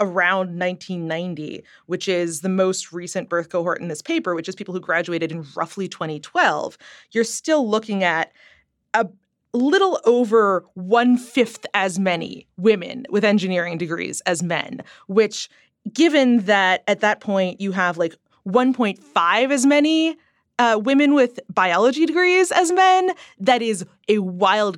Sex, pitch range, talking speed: female, 175-230 Hz, 145 wpm